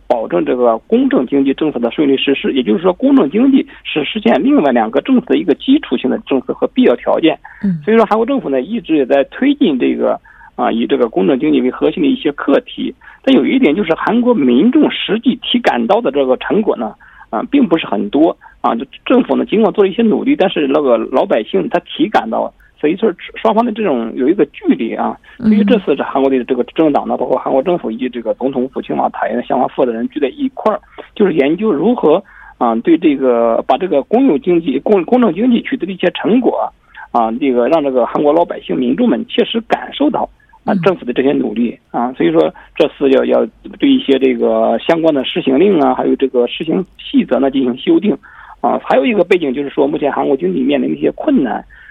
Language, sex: Korean, male